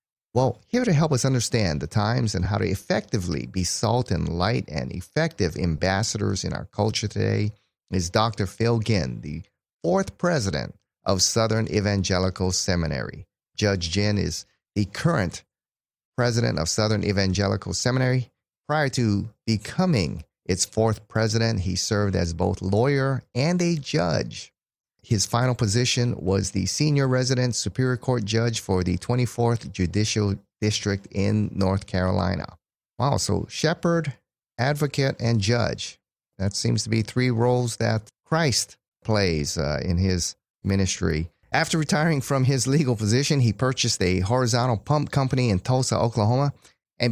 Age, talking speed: 30-49, 140 wpm